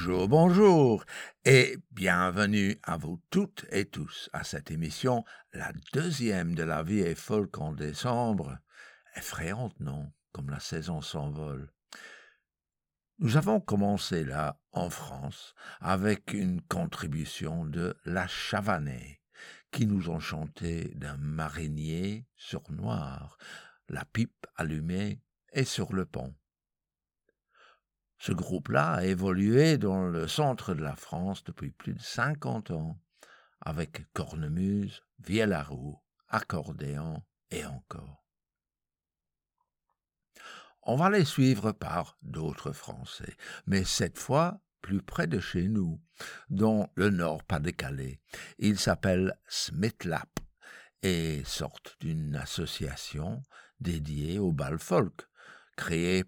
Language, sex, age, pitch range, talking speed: French, male, 60-79, 75-105 Hz, 115 wpm